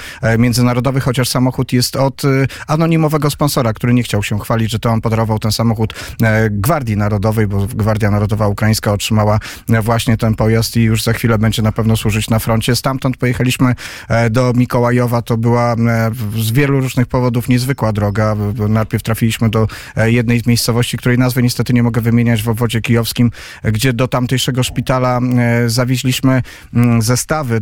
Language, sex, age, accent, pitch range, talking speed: Polish, male, 40-59, native, 110-125 Hz, 155 wpm